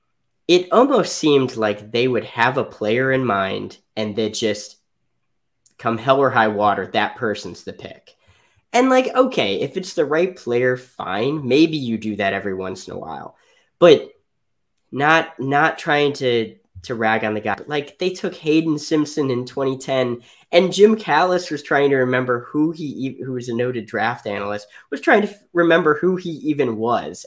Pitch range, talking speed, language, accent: 120-170 Hz, 180 wpm, English, American